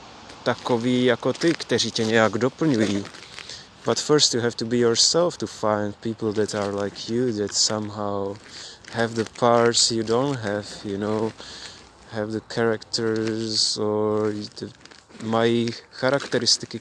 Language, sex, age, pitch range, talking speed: Czech, male, 20-39, 110-130 Hz, 135 wpm